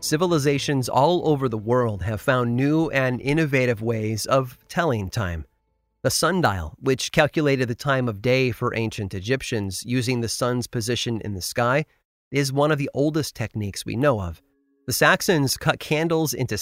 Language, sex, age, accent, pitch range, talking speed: English, male, 30-49, American, 110-145 Hz, 165 wpm